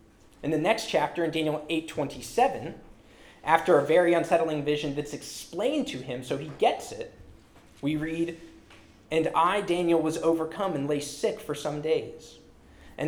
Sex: male